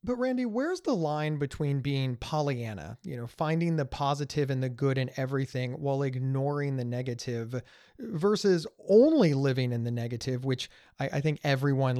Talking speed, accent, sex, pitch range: 165 wpm, American, male, 130-165 Hz